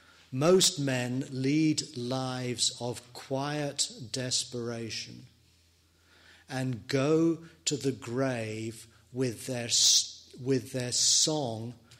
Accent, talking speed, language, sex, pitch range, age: British, 85 wpm, English, male, 95-135 Hz, 40-59